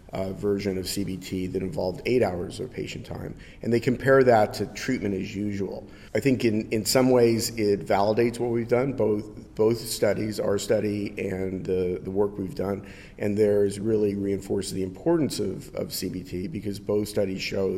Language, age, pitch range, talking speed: English, 50-69, 95-110 Hz, 180 wpm